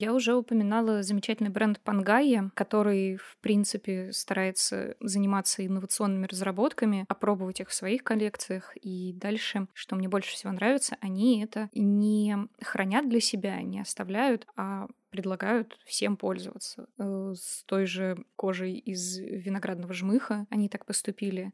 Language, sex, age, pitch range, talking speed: Russian, female, 20-39, 190-225 Hz, 130 wpm